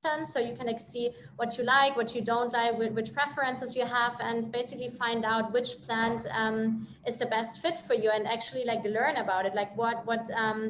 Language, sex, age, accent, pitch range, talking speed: English, female, 20-39, German, 225-255 Hz, 210 wpm